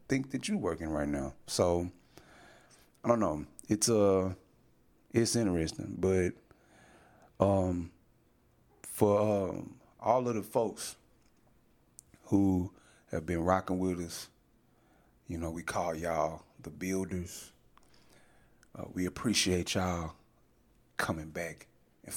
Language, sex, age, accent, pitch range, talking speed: English, male, 30-49, American, 85-110 Hz, 115 wpm